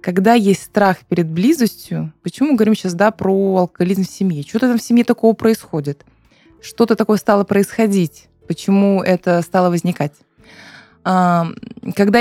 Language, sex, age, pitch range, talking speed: Russian, female, 20-39, 180-230 Hz, 140 wpm